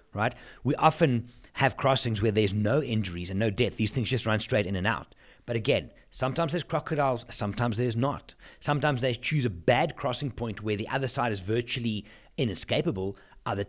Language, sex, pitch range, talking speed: English, male, 110-145 Hz, 190 wpm